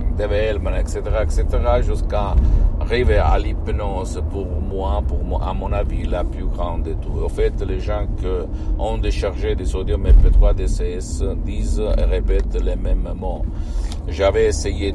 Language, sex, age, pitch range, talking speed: Italian, male, 50-69, 75-95 Hz, 155 wpm